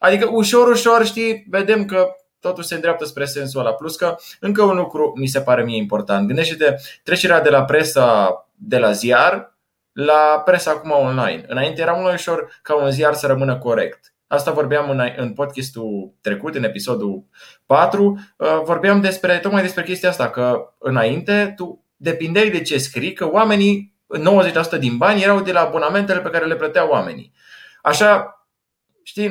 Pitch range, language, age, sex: 135-185 Hz, Romanian, 20-39, male